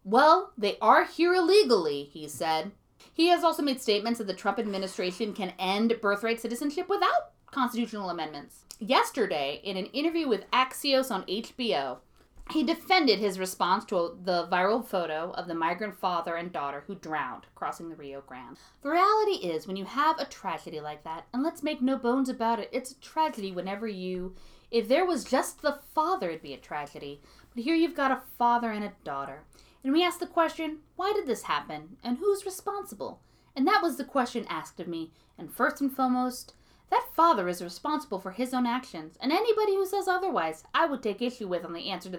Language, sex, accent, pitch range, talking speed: English, female, American, 185-305 Hz, 195 wpm